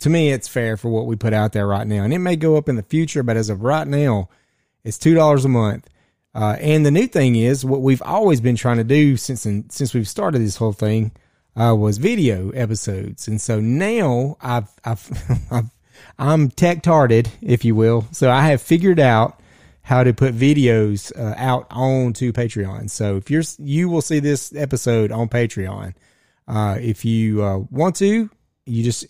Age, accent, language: 30-49, American, English